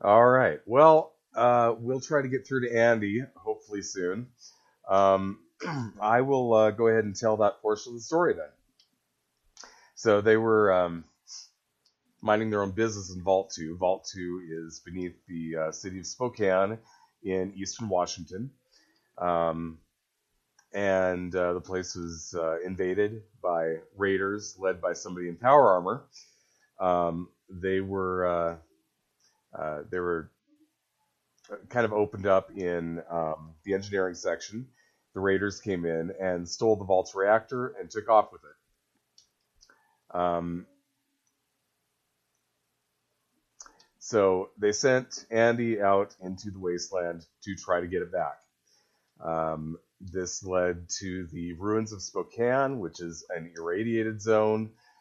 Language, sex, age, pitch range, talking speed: English, male, 30-49, 85-110 Hz, 135 wpm